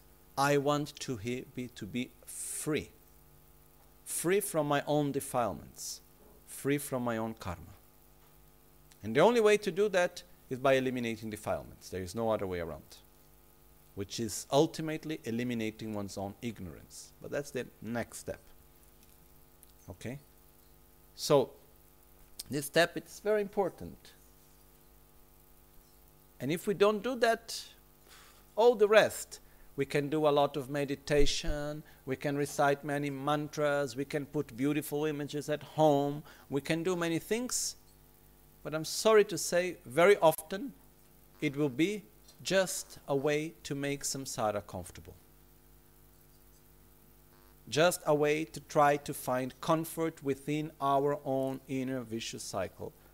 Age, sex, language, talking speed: 50-69, male, Italian, 130 wpm